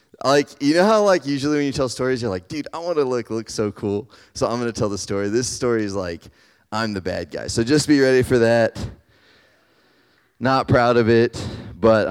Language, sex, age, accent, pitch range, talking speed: English, male, 30-49, American, 100-135 Hz, 225 wpm